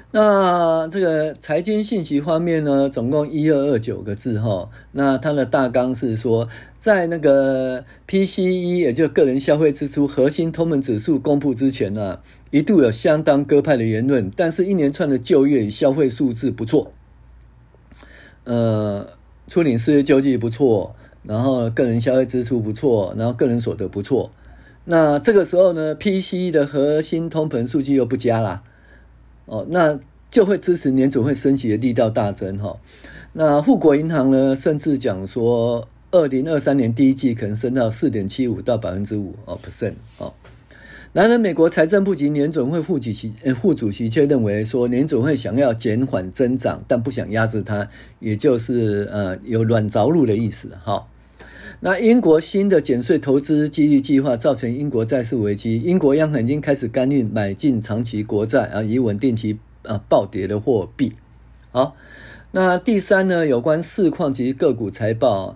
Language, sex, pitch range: Chinese, male, 110-150 Hz